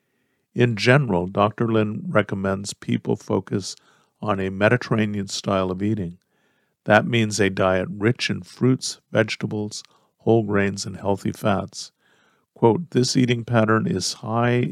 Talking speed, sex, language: 125 wpm, male, English